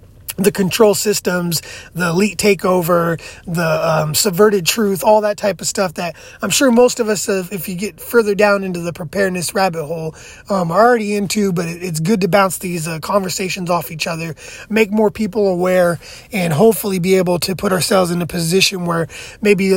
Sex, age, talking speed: male, 30-49, 190 wpm